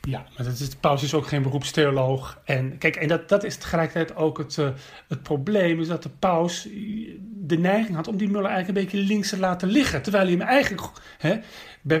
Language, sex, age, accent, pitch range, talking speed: Dutch, male, 40-59, Dutch, 145-195 Hz, 225 wpm